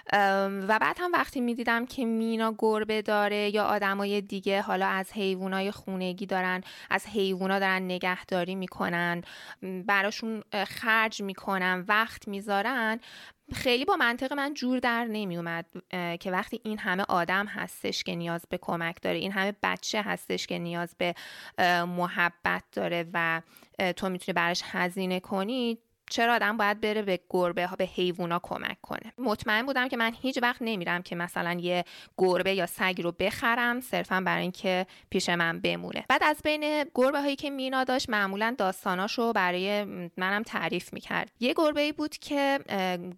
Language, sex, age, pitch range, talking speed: Persian, female, 20-39, 180-230 Hz, 165 wpm